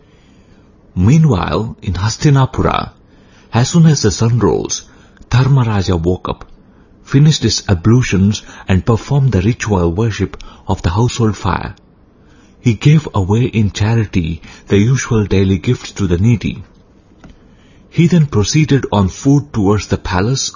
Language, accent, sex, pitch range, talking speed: English, Indian, male, 95-120 Hz, 130 wpm